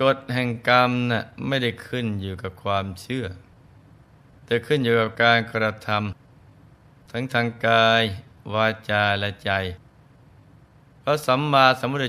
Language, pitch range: Thai, 105-130 Hz